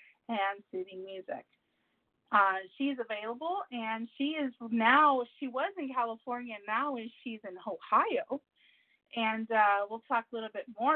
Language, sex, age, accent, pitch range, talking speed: English, female, 30-49, American, 195-255 Hz, 155 wpm